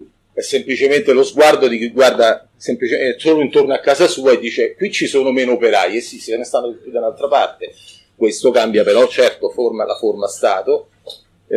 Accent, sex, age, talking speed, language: native, male, 40-59, 185 wpm, Italian